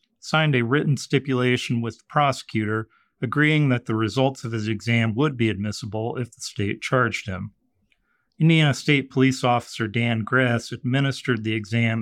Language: English